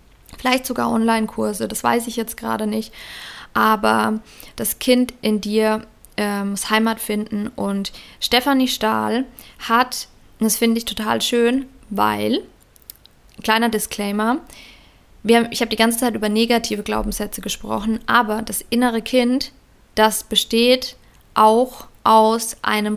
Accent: German